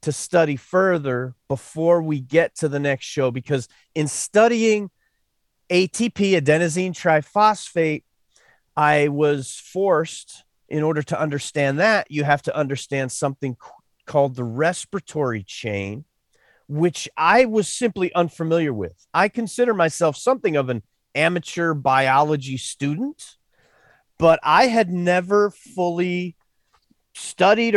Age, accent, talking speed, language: 30-49, American, 115 wpm, English